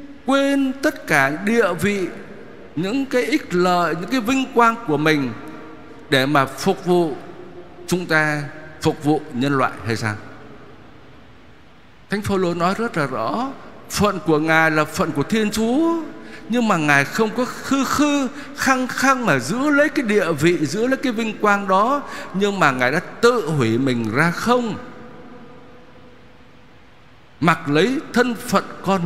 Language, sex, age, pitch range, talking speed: Vietnamese, male, 60-79, 150-245 Hz, 155 wpm